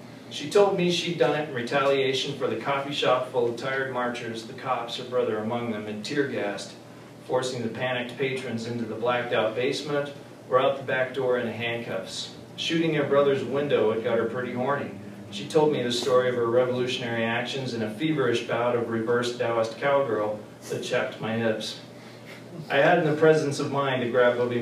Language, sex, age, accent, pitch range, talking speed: English, male, 40-59, American, 110-130 Hz, 195 wpm